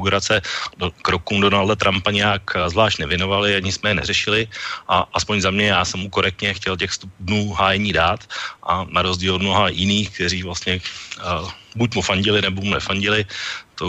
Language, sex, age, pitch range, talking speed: Slovak, male, 40-59, 95-105 Hz, 170 wpm